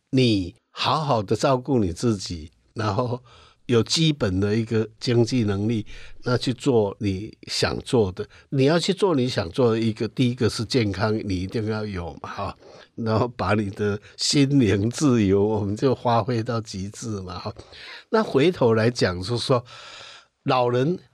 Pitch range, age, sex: 105-130 Hz, 60-79, male